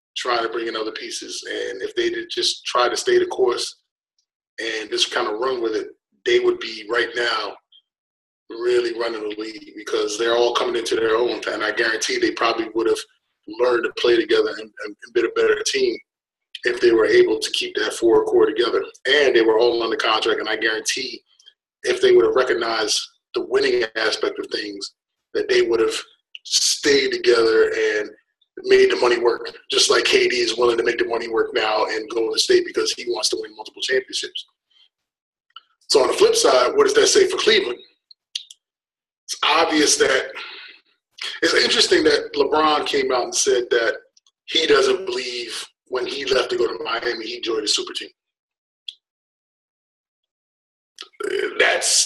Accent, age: American, 20-39